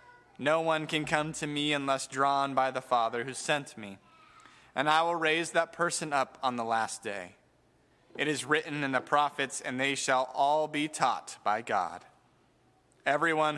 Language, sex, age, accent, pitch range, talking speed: English, male, 20-39, American, 120-145 Hz, 175 wpm